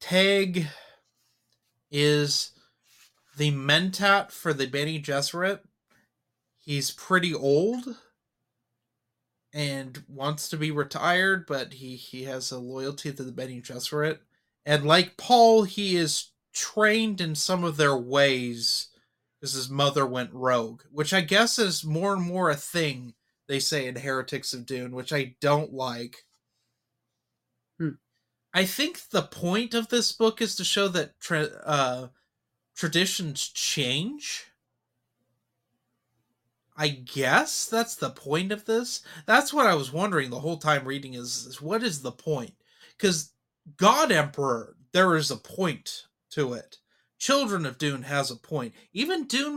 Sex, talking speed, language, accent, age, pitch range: male, 140 wpm, English, American, 30-49, 130-185 Hz